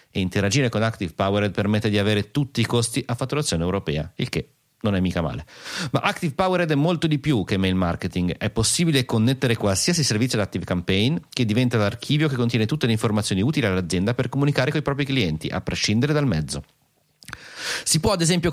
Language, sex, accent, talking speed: Italian, male, native, 200 wpm